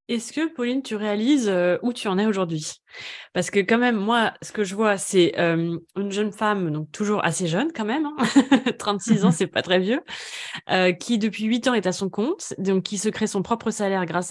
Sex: female